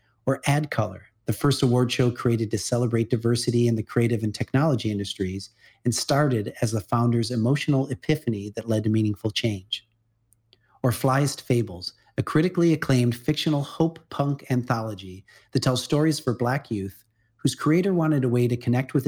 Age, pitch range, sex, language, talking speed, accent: 40-59, 110-135 Hz, male, English, 165 wpm, American